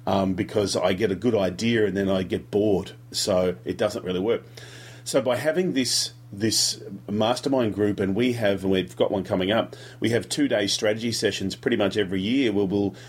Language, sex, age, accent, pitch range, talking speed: English, male, 40-59, Australian, 100-120 Hz, 205 wpm